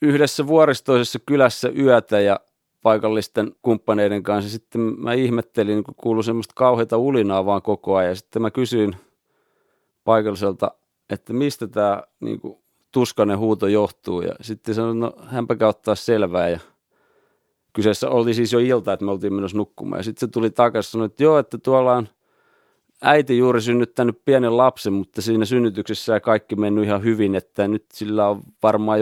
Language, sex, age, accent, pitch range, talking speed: Finnish, male, 30-49, native, 105-120 Hz, 155 wpm